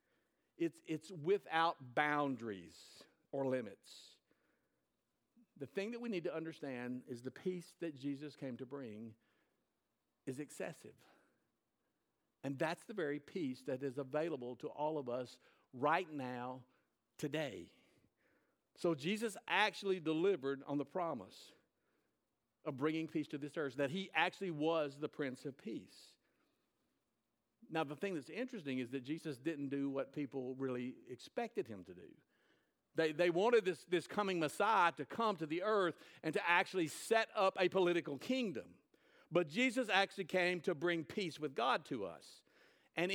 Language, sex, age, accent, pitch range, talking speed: English, male, 60-79, American, 145-190 Hz, 150 wpm